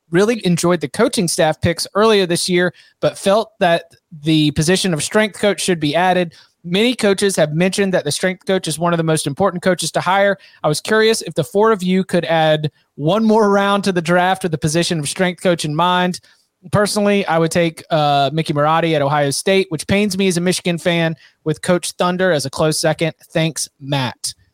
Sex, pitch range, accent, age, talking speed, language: male, 155-190 Hz, American, 20-39, 215 wpm, English